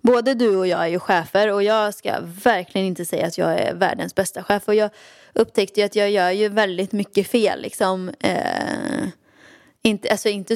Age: 20-39